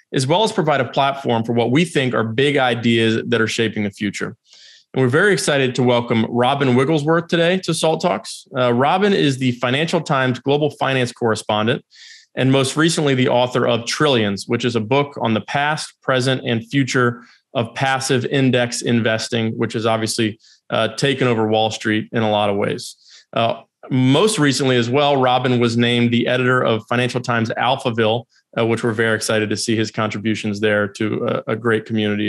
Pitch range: 115-135 Hz